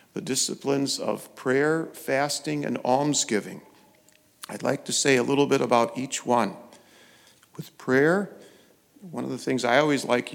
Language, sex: English, male